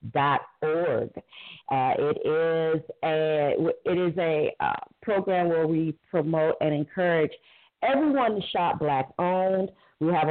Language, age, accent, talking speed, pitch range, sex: English, 40-59, American, 120 wpm, 145-190 Hz, female